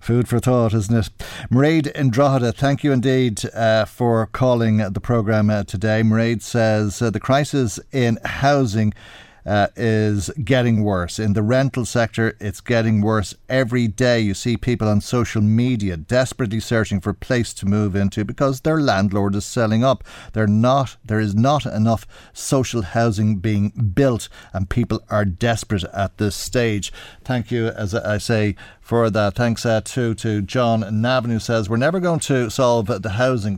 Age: 50-69